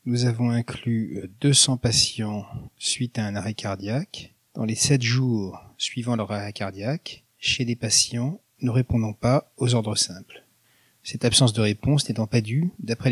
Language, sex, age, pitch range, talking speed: French, male, 40-59, 115-130 Hz, 160 wpm